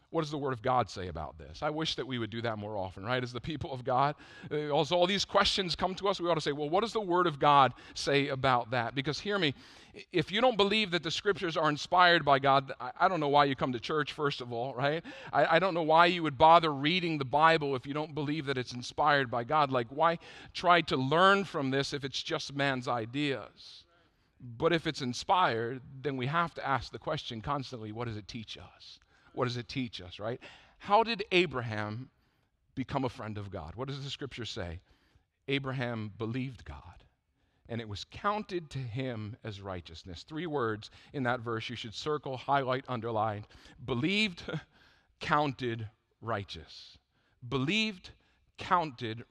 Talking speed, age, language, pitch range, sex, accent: 200 wpm, 50-69, English, 115-165 Hz, male, American